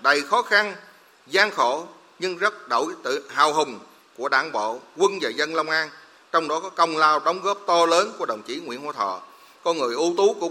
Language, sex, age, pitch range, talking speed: Vietnamese, male, 30-49, 120-185 Hz, 225 wpm